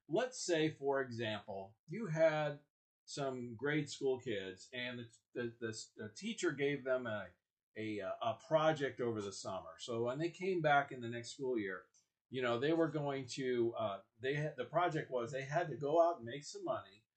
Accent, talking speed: American, 195 wpm